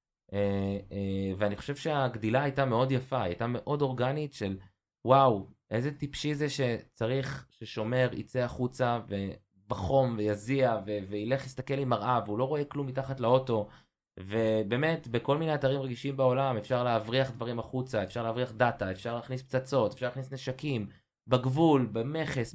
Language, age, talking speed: Hebrew, 20-39, 145 wpm